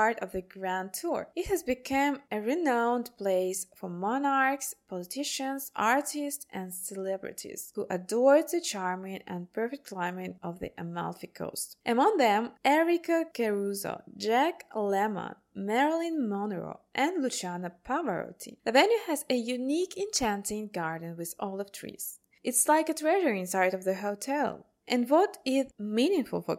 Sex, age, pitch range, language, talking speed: female, 20-39, 195-280 Hz, English, 140 wpm